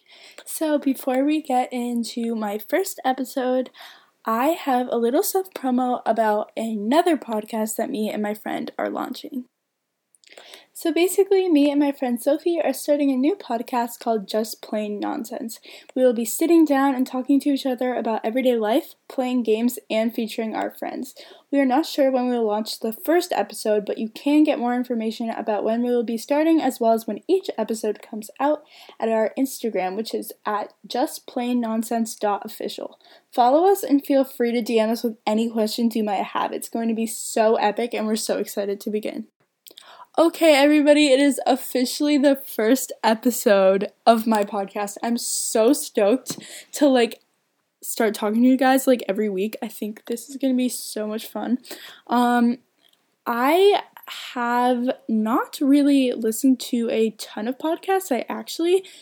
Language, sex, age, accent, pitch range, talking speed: English, female, 10-29, American, 225-280 Hz, 175 wpm